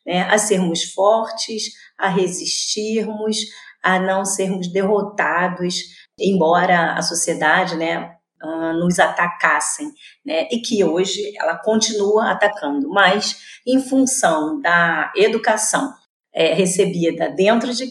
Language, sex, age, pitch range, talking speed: Portuguese, female, 30-49, 170-215 Hz, 100 wpm